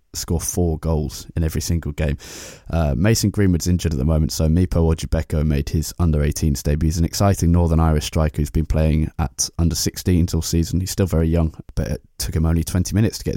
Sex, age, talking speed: male, 20-39, 220 wpm